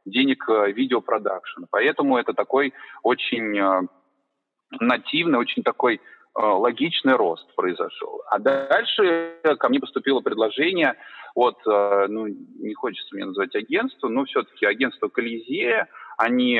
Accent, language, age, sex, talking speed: native, Russian, 30-49, male, 110 wpm